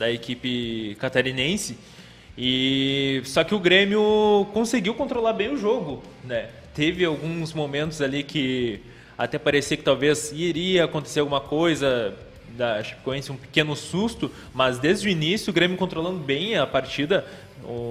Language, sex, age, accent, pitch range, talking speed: Portuguese, male, 20-39, Brazilian, 135-170 Hz, 145 wpm